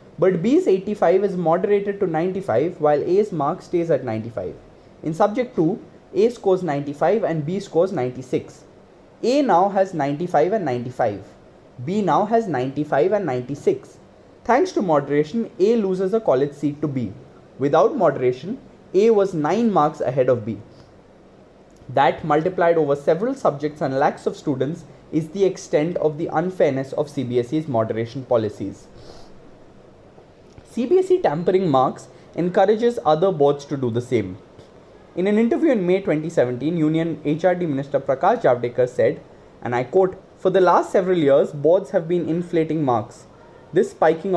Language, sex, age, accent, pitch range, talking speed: English, male, 20-39, Indian, 140-195 Hz, 150 wpm